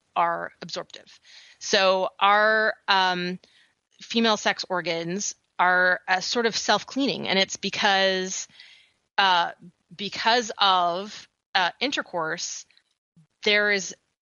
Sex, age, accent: female, 30-49, American